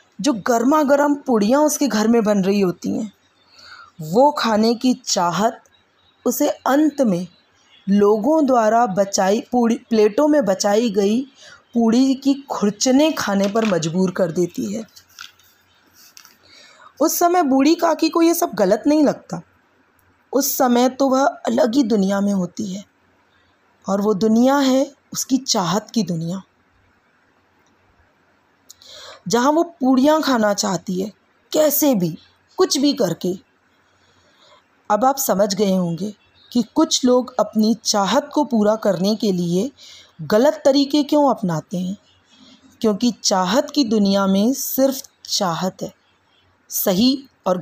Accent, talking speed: native, 130 wpm